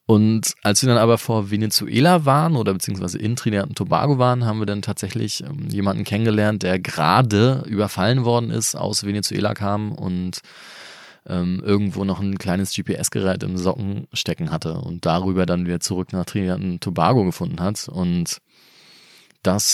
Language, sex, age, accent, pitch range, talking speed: German, male, 20-39, German, 100-130 Hz, 165 wpm